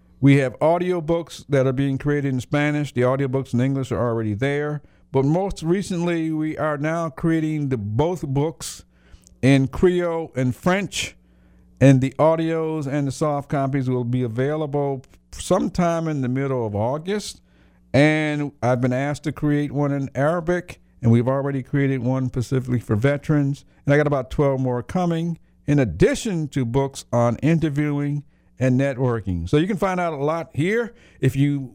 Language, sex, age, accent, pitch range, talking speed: English, male, 50-69, American, 120-150 Hz, 165 wpm